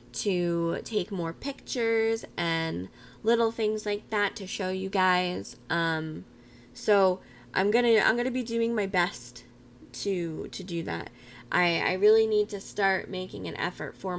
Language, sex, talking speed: English, female, 155 wpm